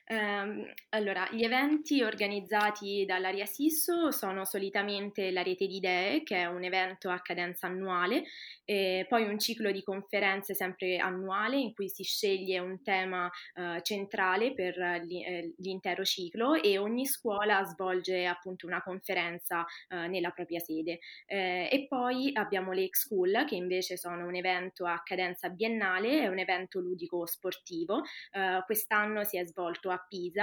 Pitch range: 180-205 Hz